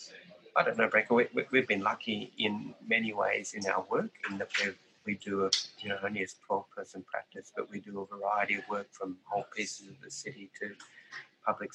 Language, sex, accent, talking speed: English, male, Australian, 215 wpm